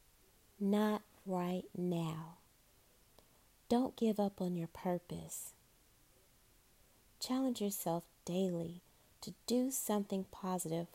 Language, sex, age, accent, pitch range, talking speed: English, female, 30-49, American, 170-215 Hz, 90 wpm